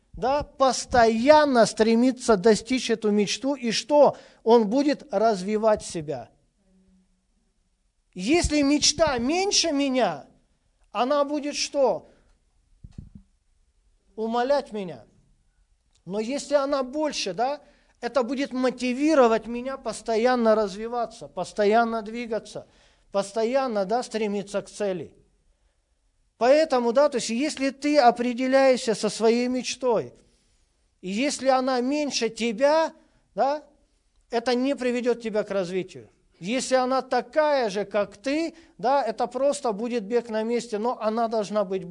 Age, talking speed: 40-59, 105 wpm